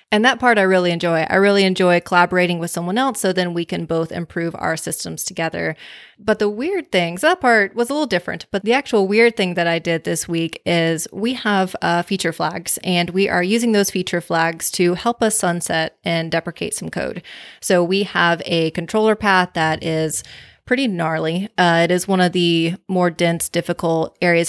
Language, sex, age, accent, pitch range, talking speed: English, female, 20-39, American, 170-200 Hz, 205 wpm